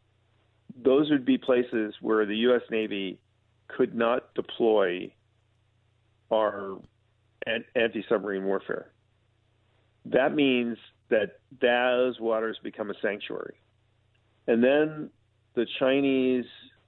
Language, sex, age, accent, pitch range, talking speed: English, male, 40-59, American, 110-130 Hz, 90 wpm